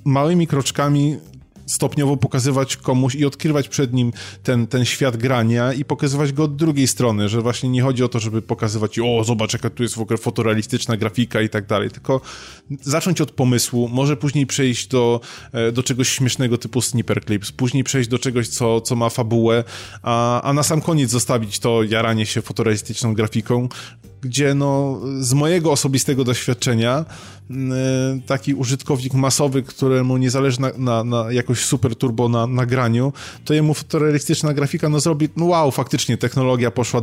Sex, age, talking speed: male, 20-39, 170 wpm